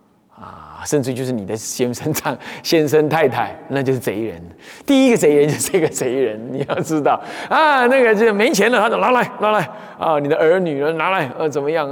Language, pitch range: Chinese, 135-210 Hz